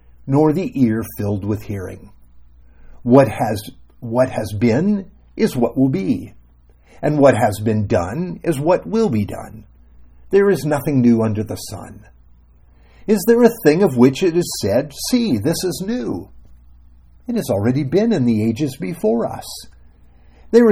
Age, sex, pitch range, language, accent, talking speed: 50-69, male, 95-155 Hz, English, American, 160 wpm